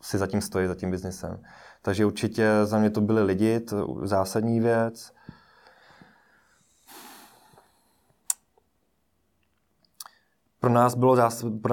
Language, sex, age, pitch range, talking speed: Czech, male, 20-39, 100-110 Hz, 85 wpm